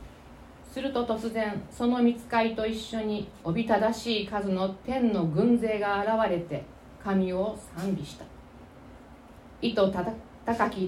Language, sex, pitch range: Japanese, female, 180-230 Hz